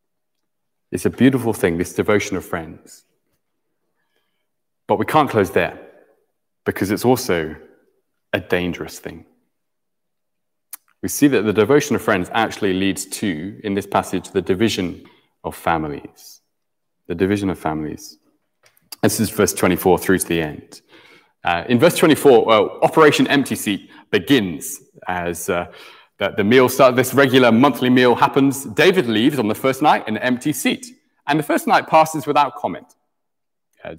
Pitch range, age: 95-125 Hz, 30-49